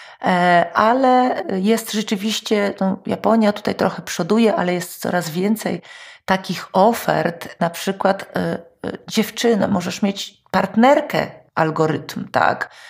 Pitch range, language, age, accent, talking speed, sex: 160-200 Hz, Polish, 40-59, native, 105 wpm, female